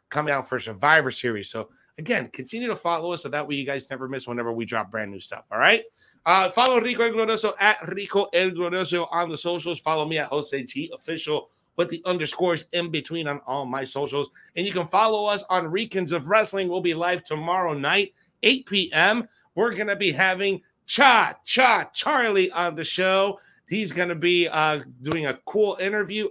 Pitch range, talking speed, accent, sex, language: 135-185 Hz, 195 wpm, American, male, English